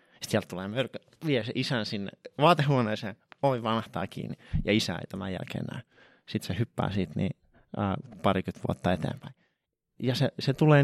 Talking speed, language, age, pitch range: 155 wpm, Finnish, 30-49, 100-135 Hz